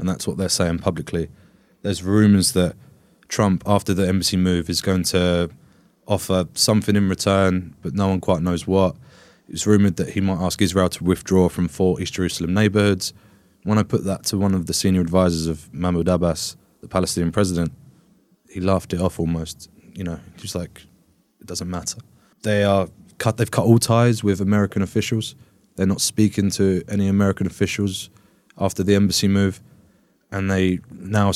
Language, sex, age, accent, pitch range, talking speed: English, male, 20-39, British, 90-100 Hz, 180 wpm